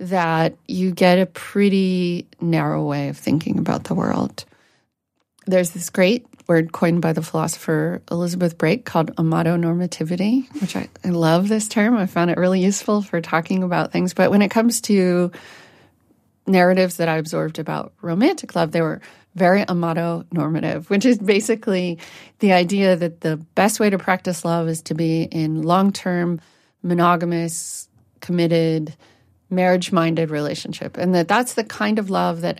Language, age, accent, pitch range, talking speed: English, 30-49, American, 160-195 Hz, 155 wpm